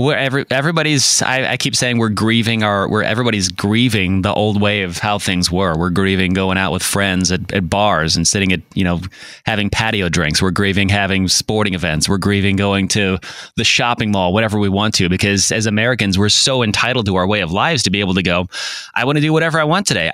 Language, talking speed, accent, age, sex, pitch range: English, 230 wpm, American, 20-39, male, 95-125 Hz